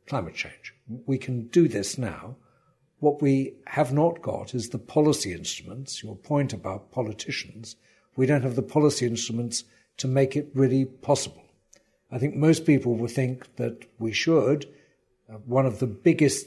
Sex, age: male, 60-79